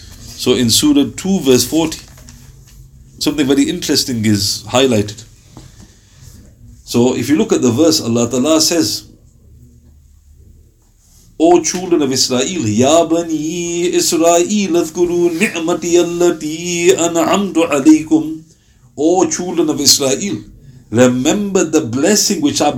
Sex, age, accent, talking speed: male, 50-69, Indian, 85 wpm